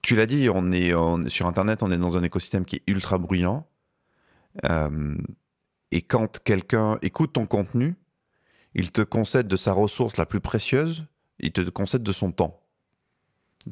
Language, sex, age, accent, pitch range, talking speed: French, male, 30-49, French, 85-105 Hz, 180 wpm